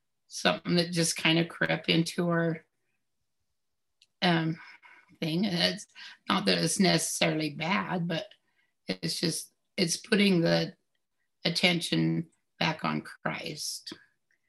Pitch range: 155-180 Hz